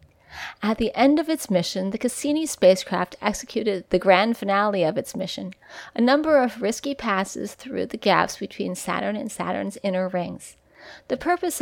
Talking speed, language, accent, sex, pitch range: 165 wpm, English, American, female, 200-275 Hz